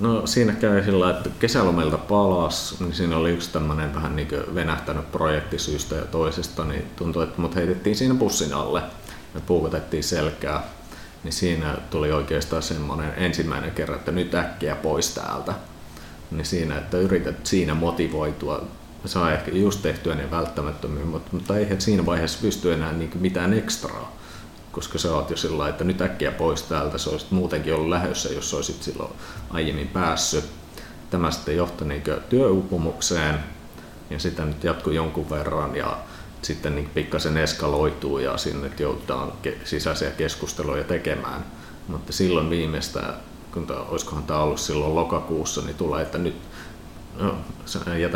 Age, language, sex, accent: 40-59, Finnish, male, native